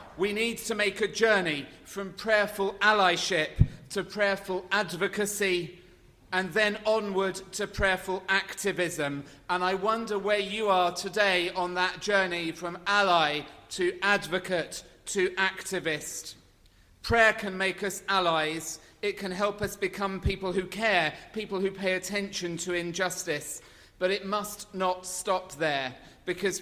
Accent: British